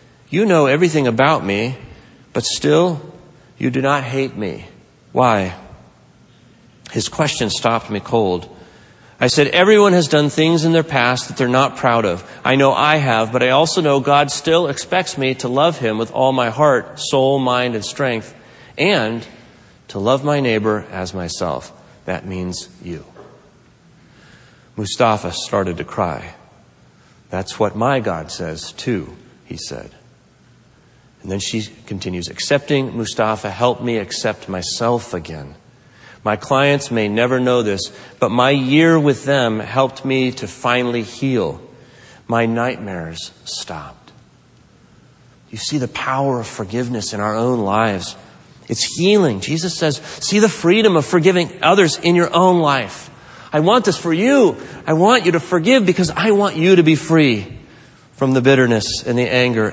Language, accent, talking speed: English, American, 155 wpm